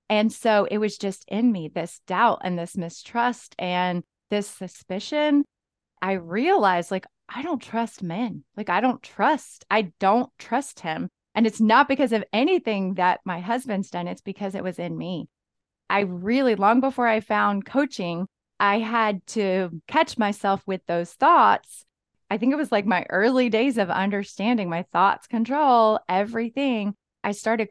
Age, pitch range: 20-39, 185-230 Hz